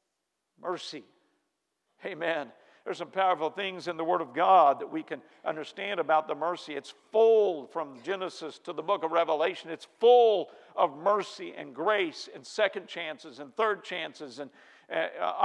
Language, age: English, 50-69